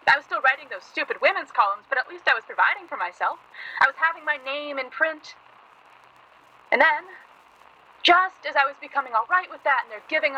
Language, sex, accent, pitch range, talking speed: English, female, American, 255-360 Hz, 210 wpm